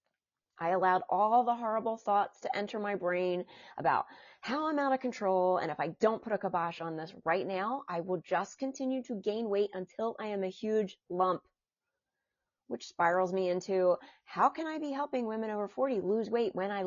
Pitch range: 180-240 Hz